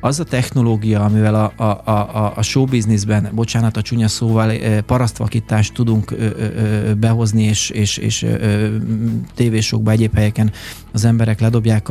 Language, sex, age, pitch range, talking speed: Hungarian, male, 30-49, 110-115 Hz, 140 wpm